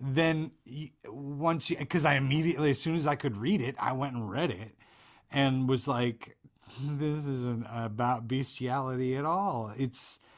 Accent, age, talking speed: American, 40-59, 160 wpm